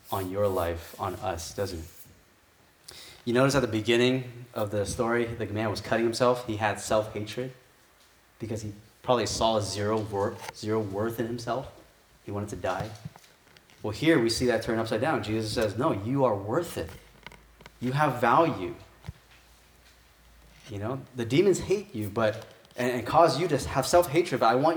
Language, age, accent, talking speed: English, 30-49, American, 170 wpm